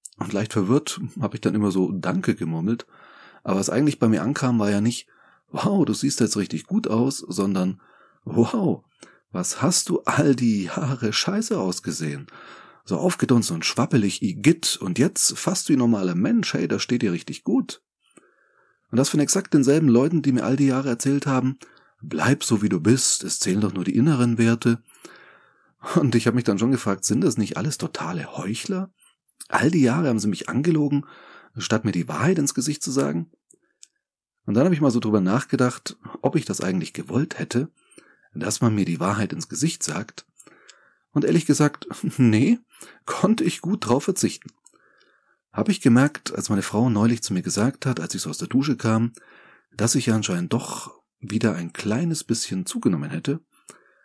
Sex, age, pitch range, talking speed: male, 30-49, 105-140 Hz, 185 wpm